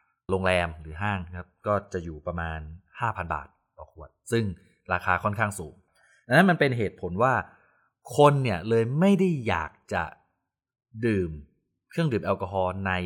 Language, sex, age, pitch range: Thai, male, 20-39, 90-125 Hz